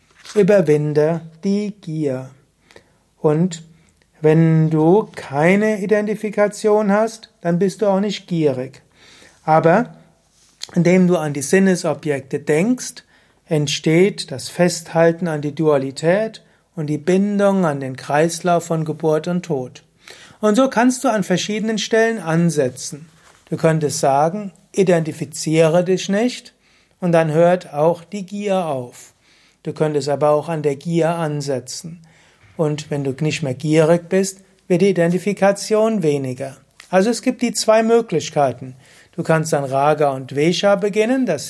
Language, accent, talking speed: German, German, 135 wpm